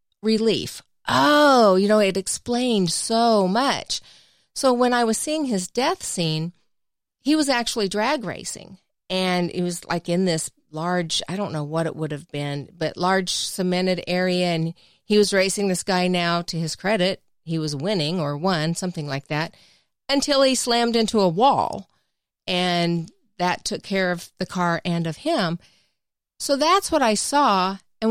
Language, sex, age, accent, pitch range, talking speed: English, female, 40-59, American, 175-235 Hz, 170 wpm